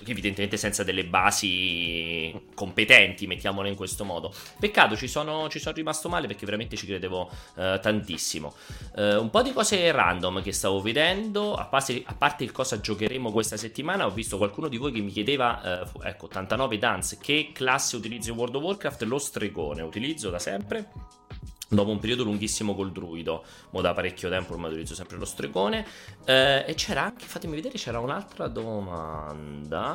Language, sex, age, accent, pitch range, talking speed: Italian, male, 30-49, native, 95-120 Hz, 170 wpm